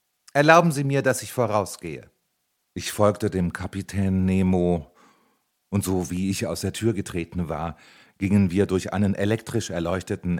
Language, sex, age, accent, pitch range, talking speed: German, male, 40-59, German, 90-110 Hz, 150 wpm